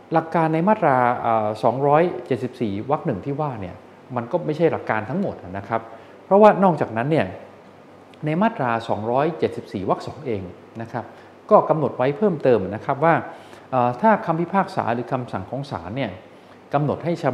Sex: male